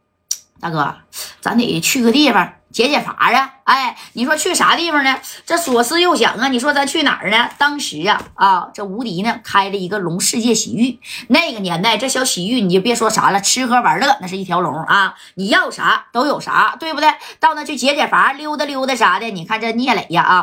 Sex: female